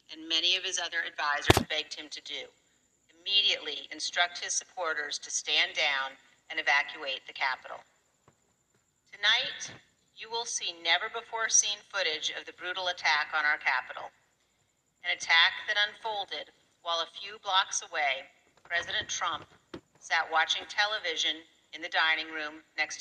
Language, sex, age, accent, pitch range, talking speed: English, female, 40-59, American, 160-210 Hz, 145 wpm